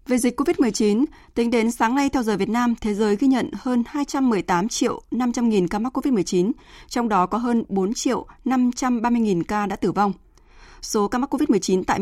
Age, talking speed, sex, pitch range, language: 20-39, 190 wpm, female, 195-255 Hz, Vietnamese